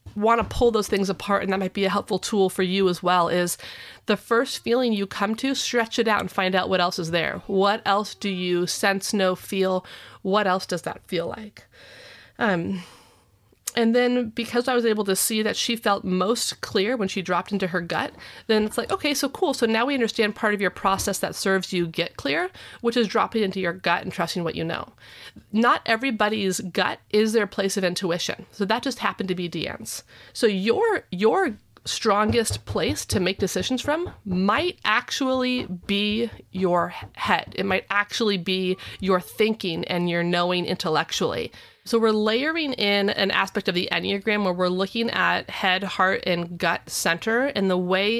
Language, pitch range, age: English, 180-225 Hz, 30-49